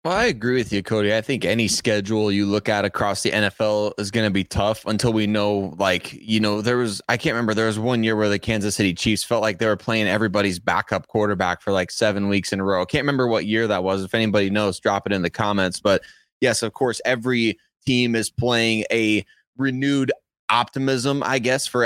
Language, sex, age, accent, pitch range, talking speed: English, male, 20-39, American, 105-125 Hz, 235 wpm